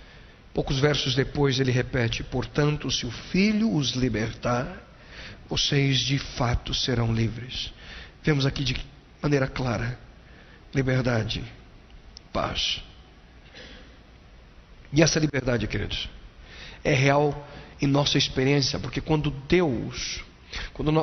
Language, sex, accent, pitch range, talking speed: Portuguese, male, Brazilian, 125-150 Hz, 105 wpm